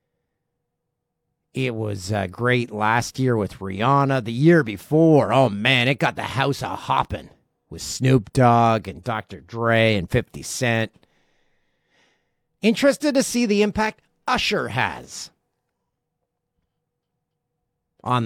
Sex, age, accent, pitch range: male, 50-69, American, 115-155 Hz